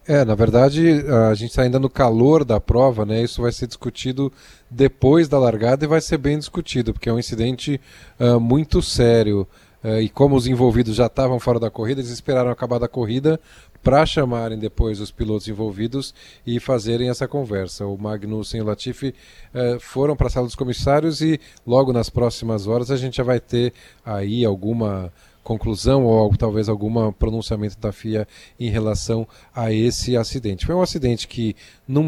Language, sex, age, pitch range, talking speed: Portuguese, male, 10-29, 110-130 Hz, 180 wpm